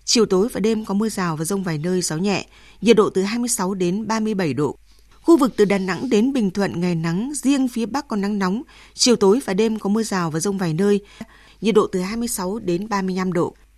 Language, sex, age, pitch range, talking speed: Vietnamese, female, 20-39, 185-225 Hz, 235 wpm